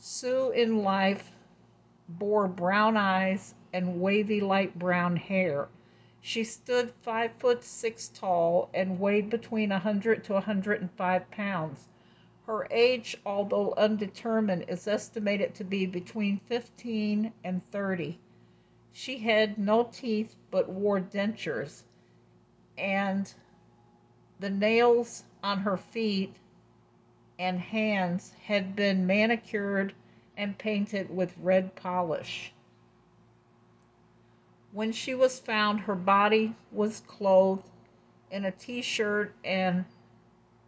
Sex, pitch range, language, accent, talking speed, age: female, 180-215 Hz, English, American, 105 wpm, 50-69